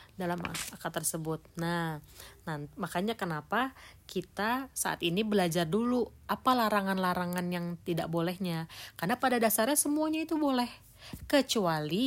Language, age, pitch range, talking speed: Indonesian, 30-49, 170-230 Hz, 115 wpm